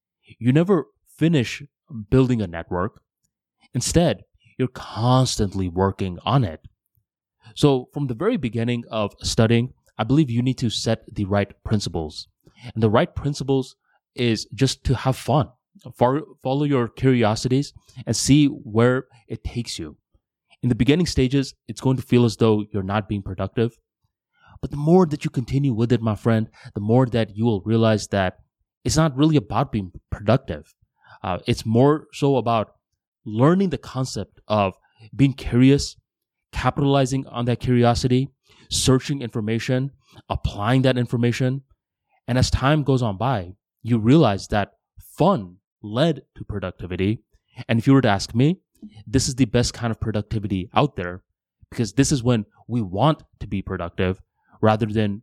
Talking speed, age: 155 wpm, 20-39